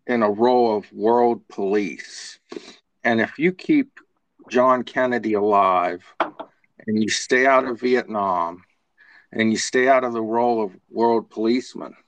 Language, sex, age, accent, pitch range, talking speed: English, male, 50-69, American, 105-120 Hz, 145 wpm